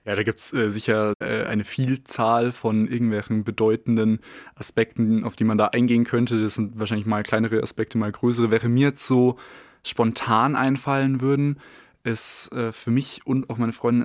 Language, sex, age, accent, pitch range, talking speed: German, male, 20-39, German, 110-125 Hz, 175 wpm